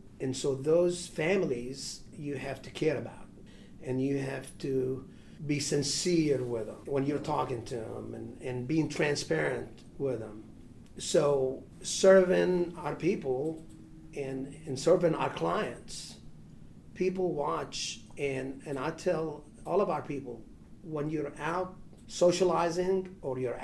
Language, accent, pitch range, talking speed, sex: English, American, 130-165 Hz, 135 wpm, male